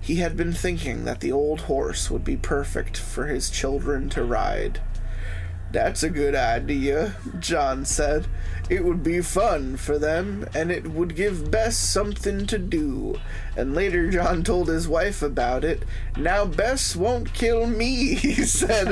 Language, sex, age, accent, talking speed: English, male, 20-39, American, 160 wpm